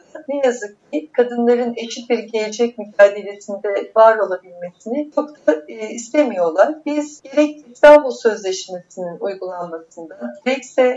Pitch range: 210-265 Hz